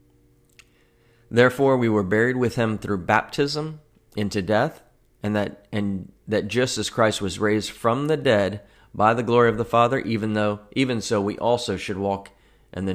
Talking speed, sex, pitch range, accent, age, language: 175 wpm, male, 100-115 Hz, American, 30-49, English